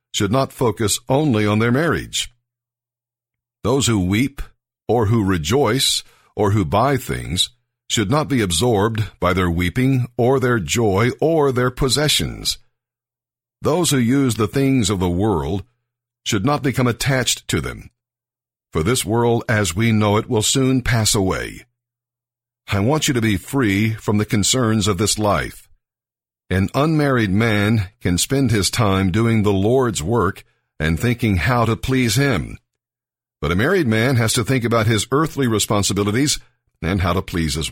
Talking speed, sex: 160 wpm, male